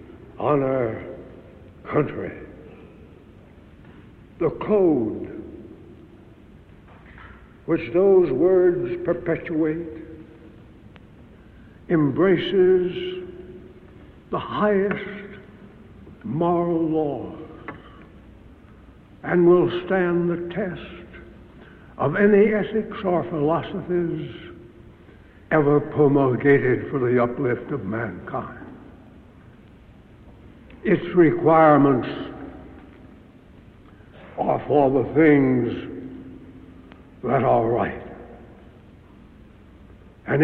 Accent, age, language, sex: American, 60-79, English, male